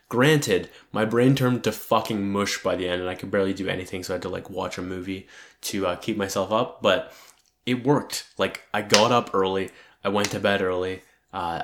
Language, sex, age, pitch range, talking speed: English, male, 20-39, 95-110 Hz, 220 wpm